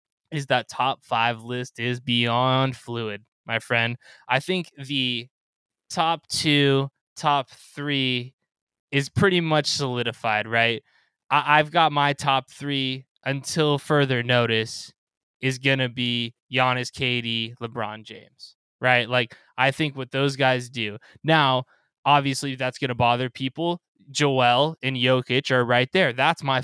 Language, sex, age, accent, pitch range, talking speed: English, male, 20-39, American, 120-150 Hz, 140 wpm